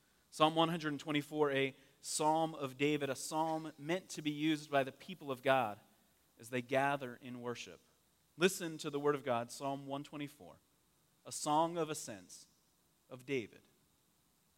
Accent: American